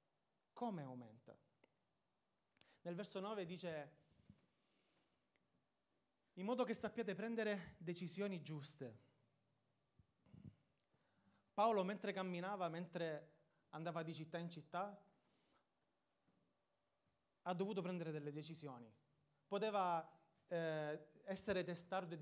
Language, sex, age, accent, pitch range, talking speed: Italian, male, 30-49, native, 150-200 Hz, 85 wpm